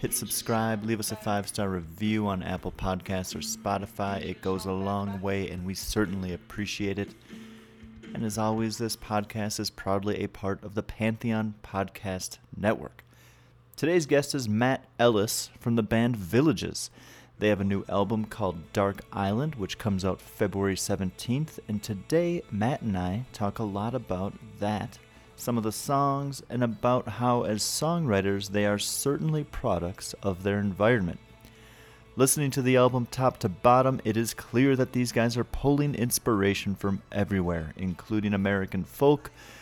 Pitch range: 100-120 Hz